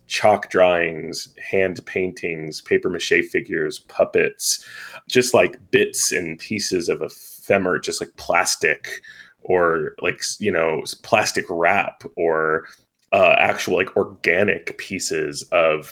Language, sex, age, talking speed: English, male, 20-39, 115 wpm